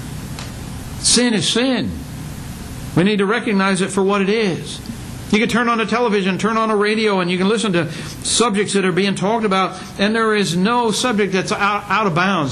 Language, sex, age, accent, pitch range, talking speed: English, male, 60-79, American, 155-210 Hz, 200 wpm